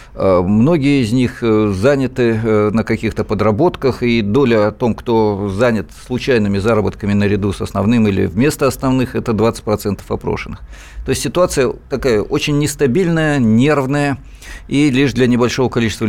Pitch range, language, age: 105-135 Hz, Russian, 50-69